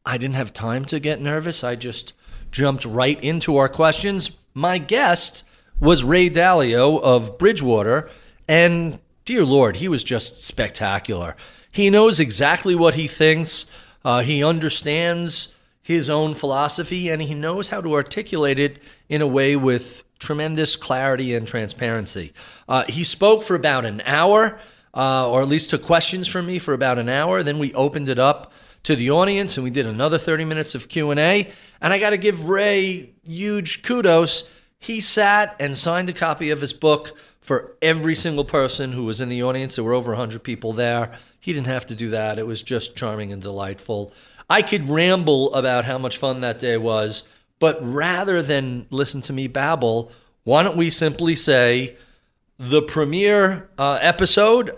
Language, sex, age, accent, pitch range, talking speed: English, male, 40-59, American, 125-170 Hz, 175 wpm